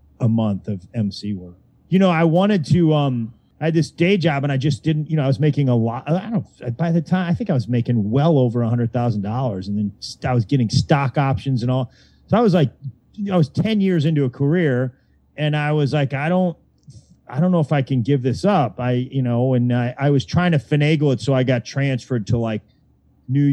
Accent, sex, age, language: American, male, 30-49, English